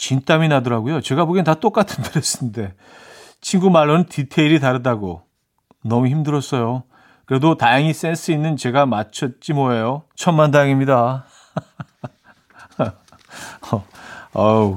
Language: Korean